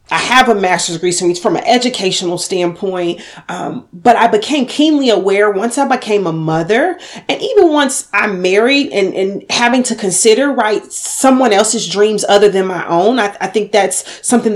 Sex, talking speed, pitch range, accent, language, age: female, 180 wpm, 190-255 Hz, American, English, 30-49